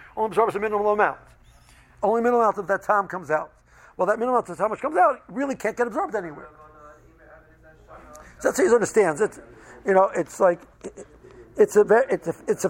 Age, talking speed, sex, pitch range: 60-79, 210 wpm, male, 150-195 Hz